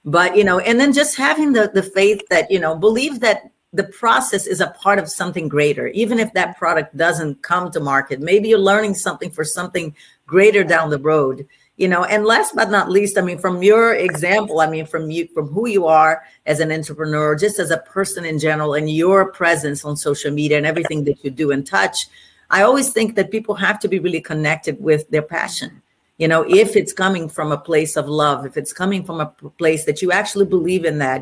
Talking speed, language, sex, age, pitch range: 225 wpm, English, female, 50-69, 150-195 Hz